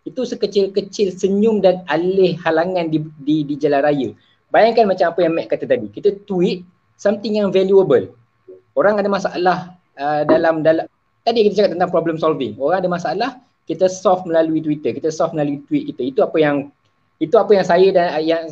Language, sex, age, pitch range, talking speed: Malay, male, 20-39, 145-190 Hz, 180 wpm